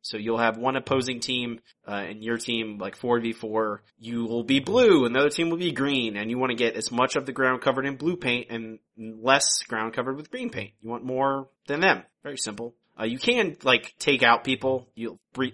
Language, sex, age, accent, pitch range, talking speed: English, male, 30-49, American, 110-140 Hz, 230 wpm